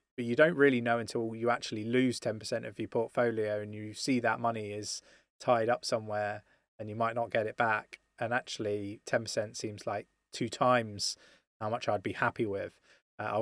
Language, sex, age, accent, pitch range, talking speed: English, male, 20-39, British, 105-130 Hz, 195 wpm